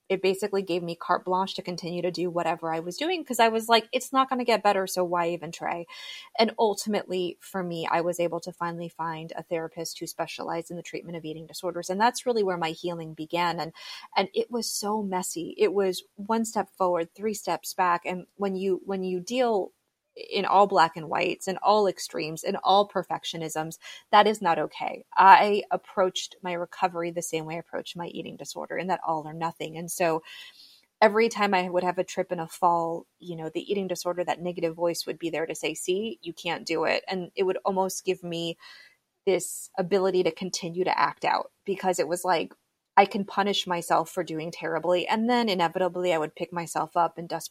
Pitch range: 170-195 Hz